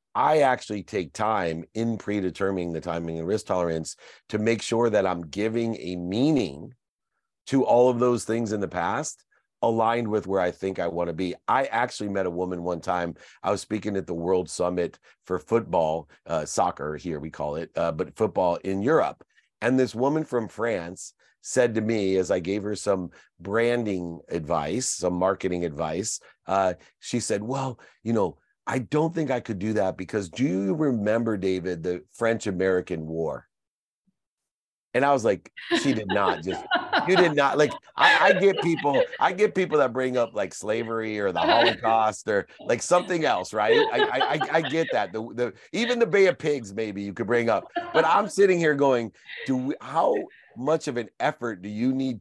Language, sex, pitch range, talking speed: English, male, 95-135 Hz, 190 wpm